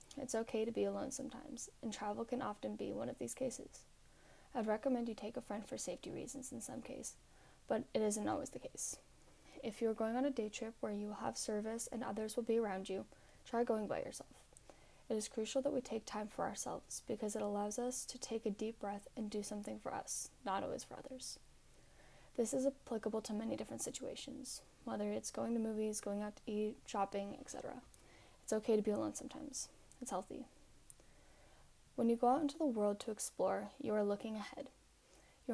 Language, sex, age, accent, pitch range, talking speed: English, female, 10-29, American, 210-255 Hz, 210 wpm